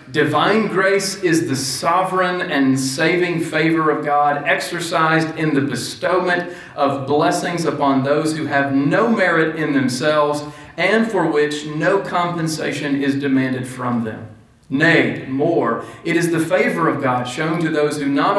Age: 40-59